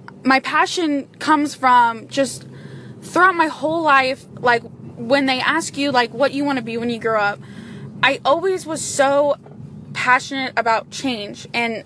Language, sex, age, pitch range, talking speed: English, female, 10-29, 225-275 Hz, 160 wpm